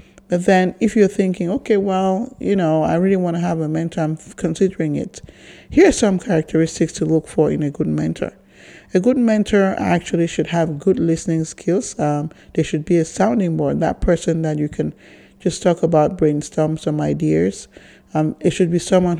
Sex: male